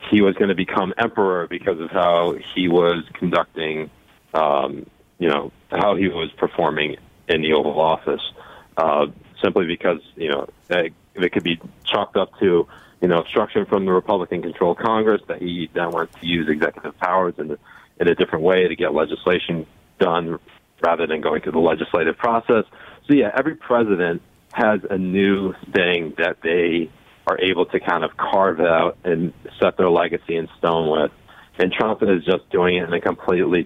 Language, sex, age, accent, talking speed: English, male, 40-59, American, 180 wpm